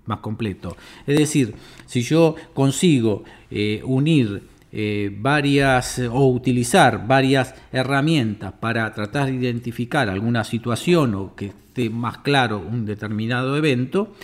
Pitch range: 120-160 Hz